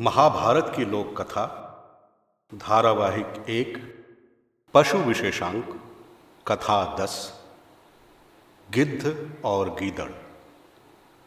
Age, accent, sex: 50-69, native, male